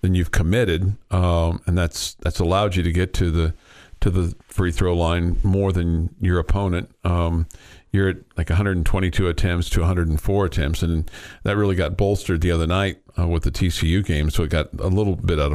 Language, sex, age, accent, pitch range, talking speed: English, male, 50-69, American, 85-105 Hz, 195 wpm